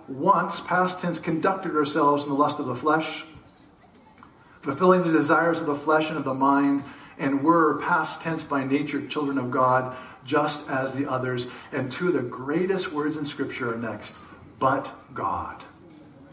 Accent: American